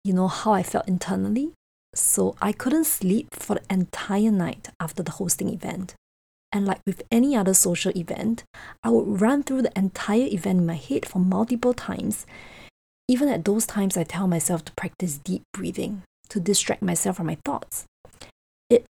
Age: 20-39